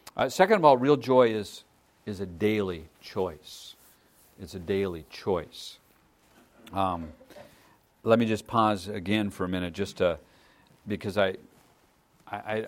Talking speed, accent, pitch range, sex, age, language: 135 wpm, American, 85-105 Hz, male, 50-69, English